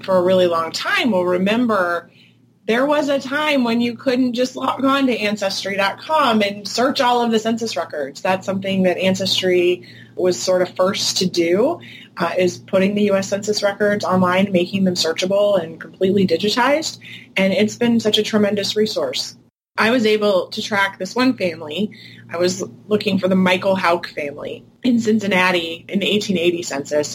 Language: English